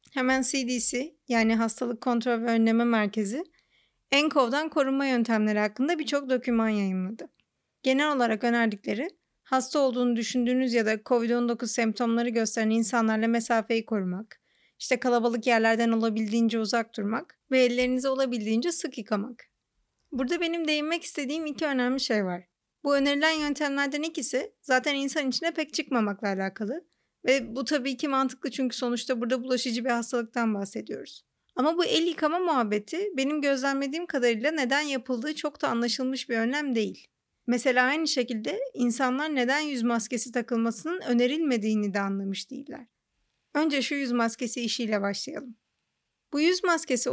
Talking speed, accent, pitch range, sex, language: 135 wpm, native, 230-285 Hz, female, Turkish